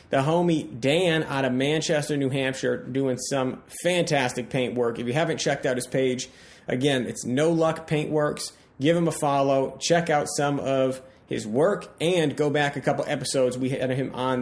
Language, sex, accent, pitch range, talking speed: English, male, American, 130-160 Hz, 185 wpm